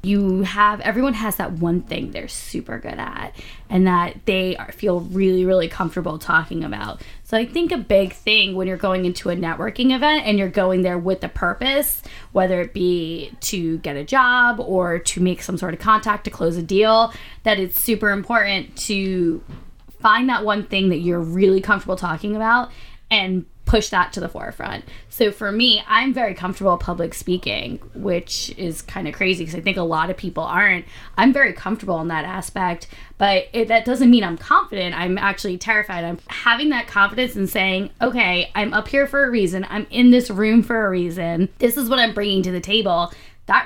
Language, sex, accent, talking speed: English, female, American, 200 wpm